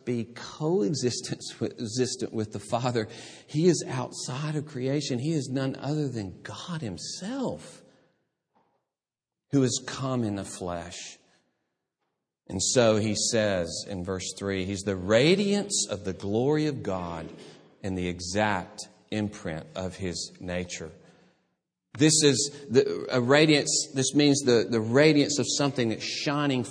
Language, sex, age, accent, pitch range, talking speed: English, male, 40-59, American, 105-140 Hz, 125 wpm